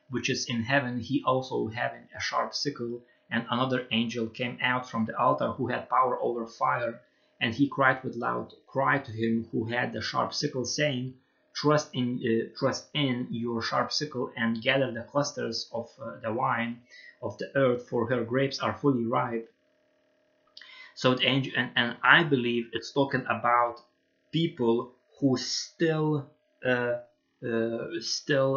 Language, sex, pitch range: English, male, 115-135 Hz